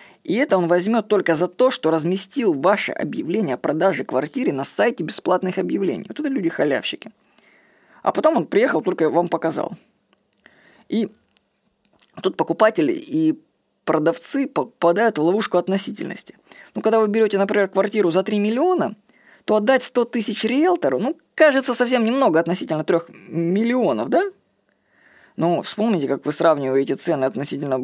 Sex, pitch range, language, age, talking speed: female, 165-240 Hz, Russian, 20-39, 140 wpm